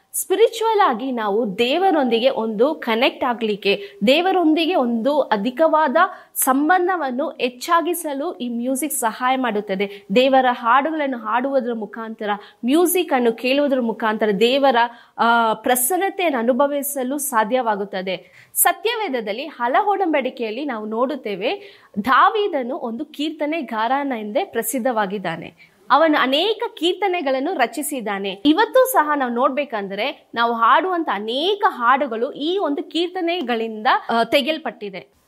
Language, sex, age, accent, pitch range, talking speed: Kannada, female, 20-39, native, 235-335 Hz, 90 wpm